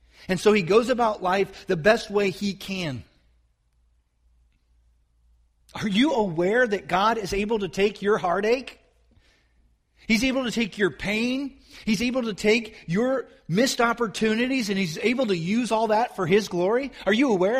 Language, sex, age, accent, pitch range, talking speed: English, male, 40-59, American, 145-220 Hz, 165 wpm